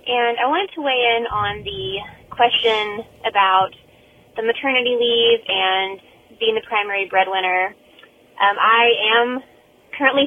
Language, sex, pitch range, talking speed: English, female, 190-235 Hz, 130 wpm